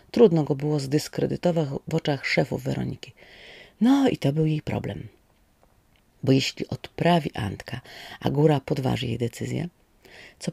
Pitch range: 130-160 Hz